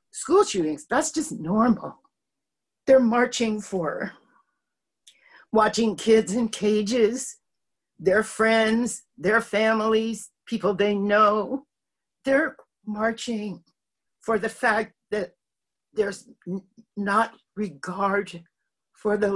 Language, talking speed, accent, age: English, 95 wpm, American, 50-69